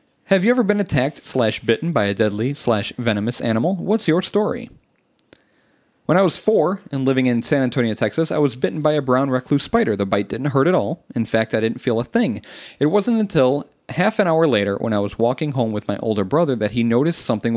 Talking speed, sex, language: 230 wpm, male, English